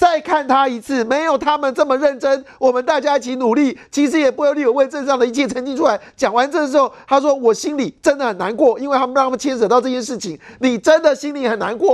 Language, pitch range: Chinese, 195-275 Hz